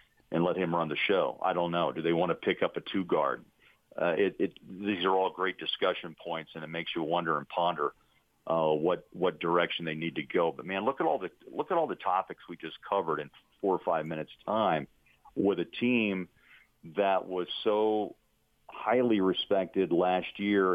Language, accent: English, American